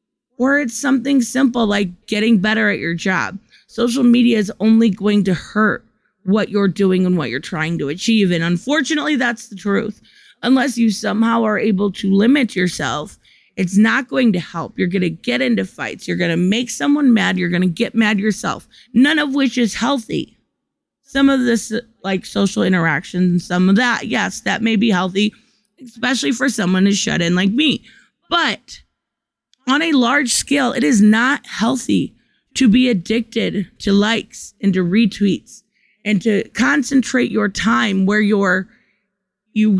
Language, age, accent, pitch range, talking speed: English, 20-39, American, 185-235 Hz, 175 wpm